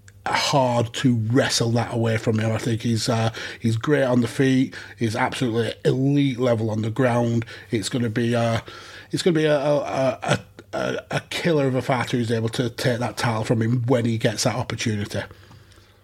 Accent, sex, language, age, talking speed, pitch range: British, male, English, 30-49, 200 wpm, 115-135 Hz